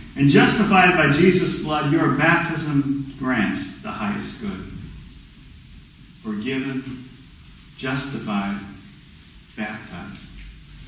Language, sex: English, male